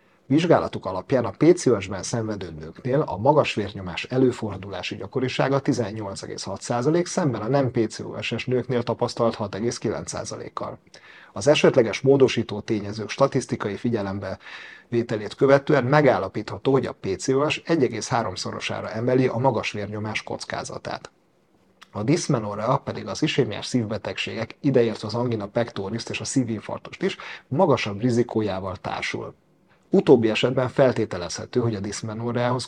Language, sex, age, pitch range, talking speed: Hungarian, male, 30-49, 105-130 Hz, 110 wpm